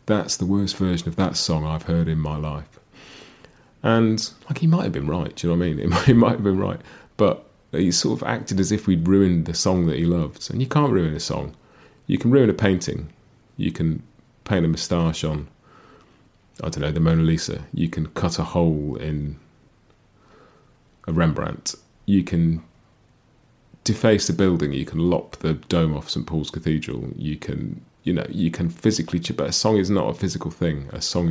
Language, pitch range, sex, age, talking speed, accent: English, 80-100 Hz, male, 30-49, 205 wpm, British